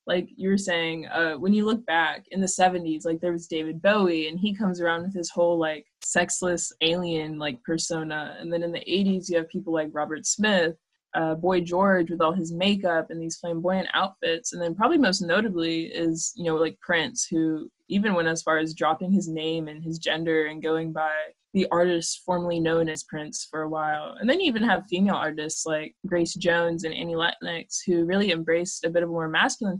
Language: English